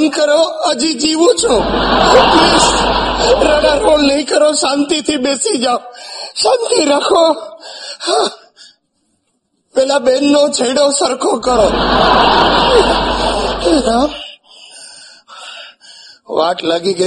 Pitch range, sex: 180-250 Hz, male